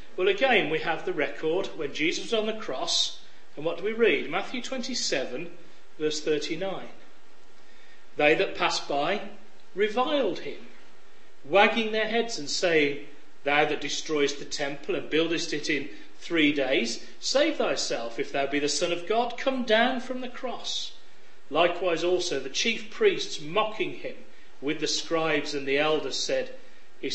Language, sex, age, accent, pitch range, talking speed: English, male, 40-59, British, 155-255 Hz, 160 wpm